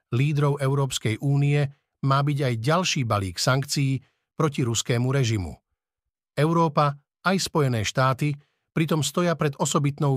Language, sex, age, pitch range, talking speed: Slovak, male, 50-69, 120-150 Hz, 120 wpm